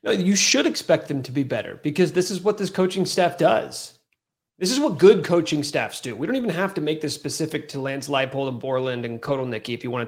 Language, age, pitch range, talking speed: English, 30-49, 140-190 Hz, 250 wpm